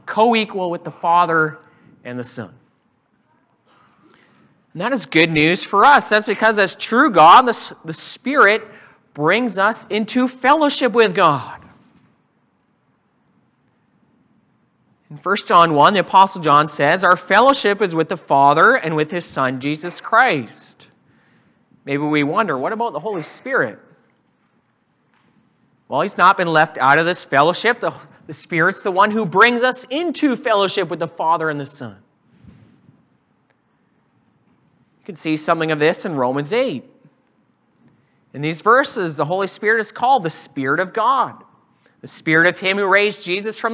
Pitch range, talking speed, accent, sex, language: 155-215 Hz, 150 wpm, American, male, English